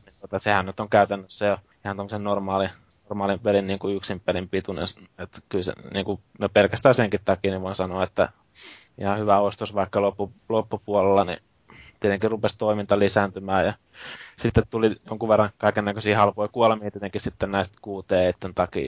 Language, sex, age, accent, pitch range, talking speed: Finnish, male, 20-39, native, 95-105 Hz, 155 wpm